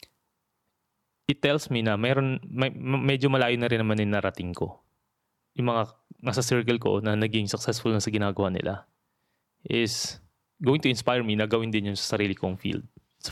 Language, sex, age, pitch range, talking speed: Filipino, male, 20-39, 105-125 Hz, 180 wpm